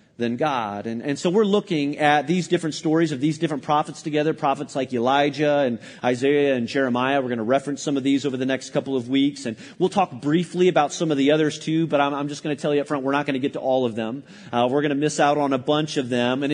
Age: 30-49